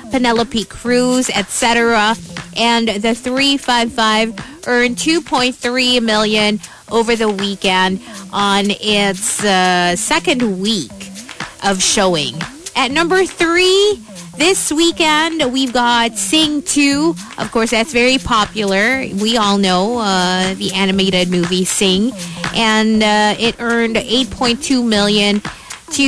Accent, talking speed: American, 110 wpm